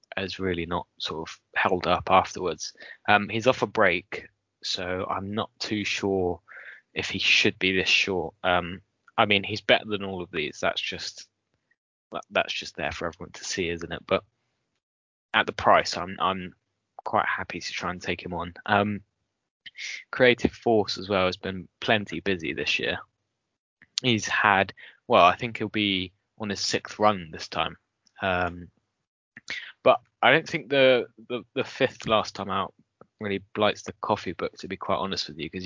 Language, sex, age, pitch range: English, male, 20-39, 90-110 Hz